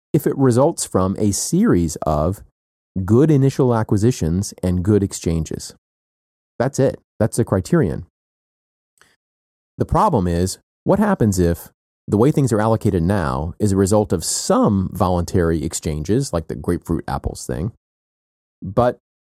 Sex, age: male, 30-49